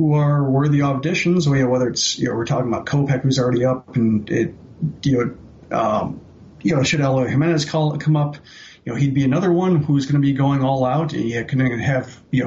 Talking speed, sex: 235 wpm, male